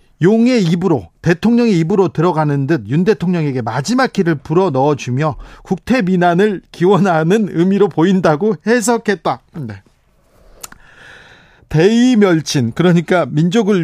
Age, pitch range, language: 40-59, 150-200 Hz, Korean